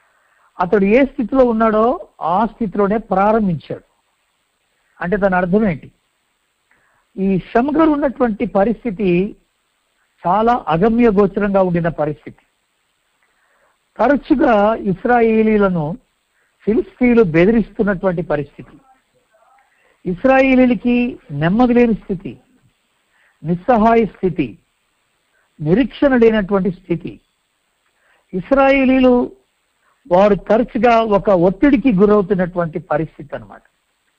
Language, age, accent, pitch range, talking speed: Telugu, 60-79, native, 180-240 Hz, 70 wpm